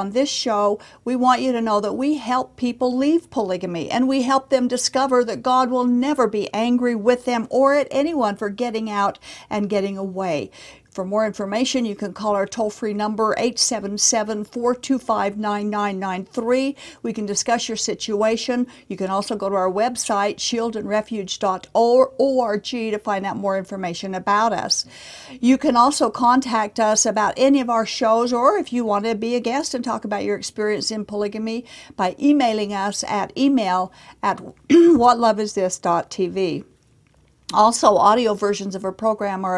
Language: English